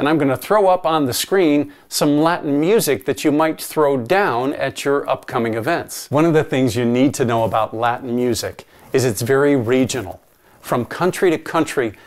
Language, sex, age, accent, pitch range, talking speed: English, male, 50-69, American, 120-140 Hz, 195 wpm